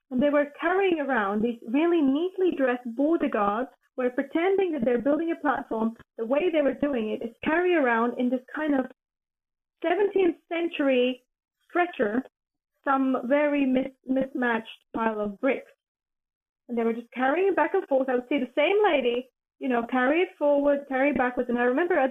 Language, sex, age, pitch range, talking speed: English, female, 20-39, 230-290 Hz, 180 wpm